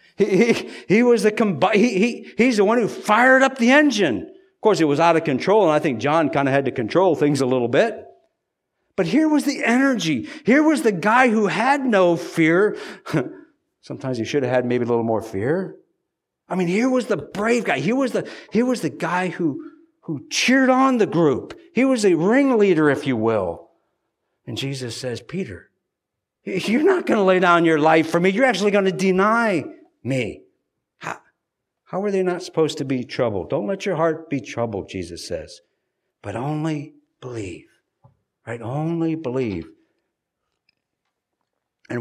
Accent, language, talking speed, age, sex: American, English, 185 wpm, 50-69, male